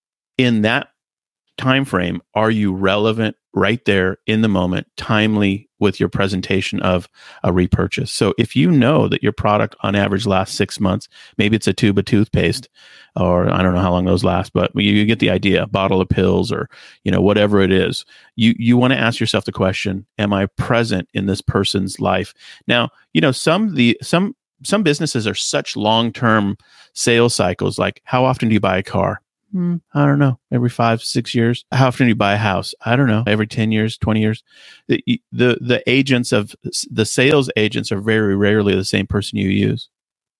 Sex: male